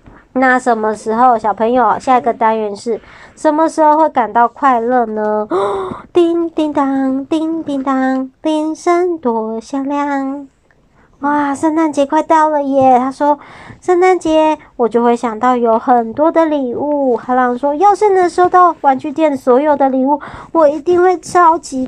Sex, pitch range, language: male, 235-310 Hz, Chinese